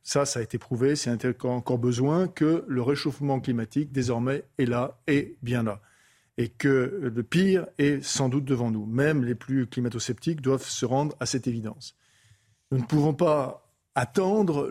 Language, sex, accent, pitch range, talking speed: French, male, French, 125-160 Hz, 170 wpm